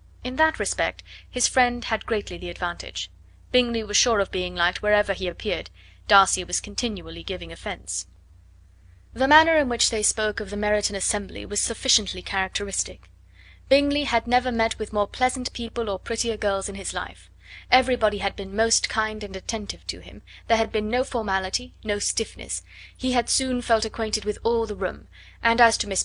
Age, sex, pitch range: 20-39, female, 185-235 Hz